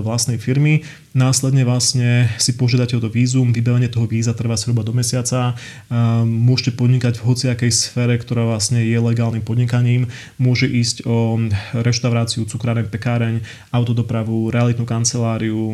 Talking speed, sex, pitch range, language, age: 130 wpm, male, 115-125 Hz, Czech, 30-49